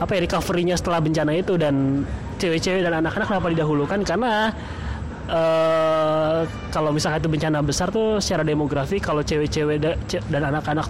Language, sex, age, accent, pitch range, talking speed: Indonesian, male, 20-39, native, 135-165 Hz, 155 wpm